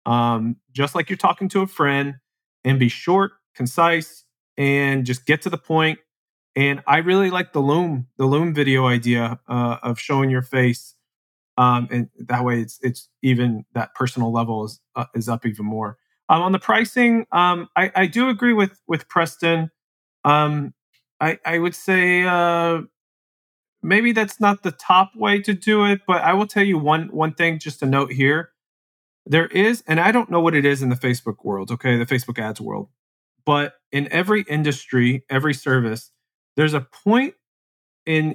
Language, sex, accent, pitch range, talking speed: English, male, American, 125-170 Hz, 180 wpm